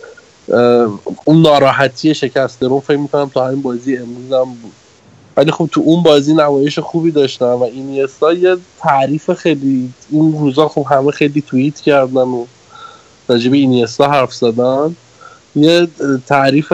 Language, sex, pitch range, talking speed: Persian, male, 125-150 Hz, 135 wpm